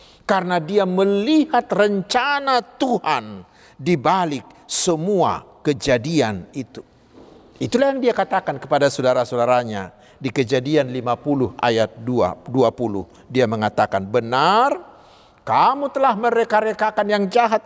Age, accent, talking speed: 50-69, native, 100 wpm